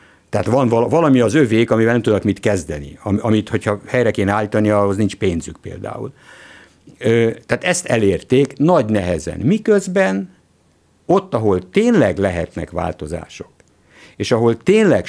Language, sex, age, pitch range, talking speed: Hungarian, male, 60-79, 90-125 Hz, 130 wpm